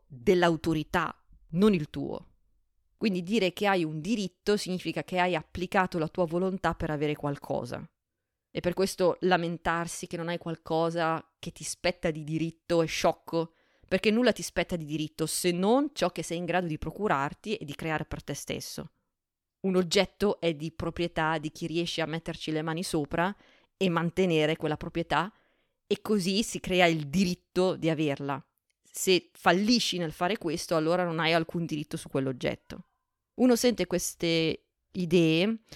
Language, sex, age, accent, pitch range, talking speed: Italian, female, 30-49, native, 160-190 Hz, 165 wpm